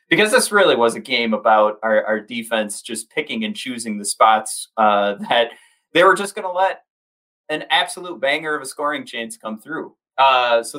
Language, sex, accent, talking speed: English, male, American, 195 wpm